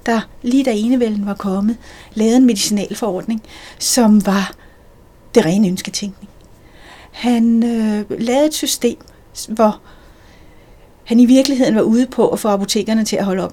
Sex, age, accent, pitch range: female, 40-59, native, 200-240 Hz